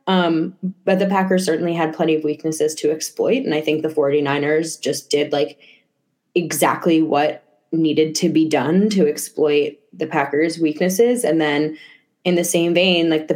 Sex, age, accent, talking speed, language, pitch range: female, 20-39, American, 170 wpm, English, 155-180 Hz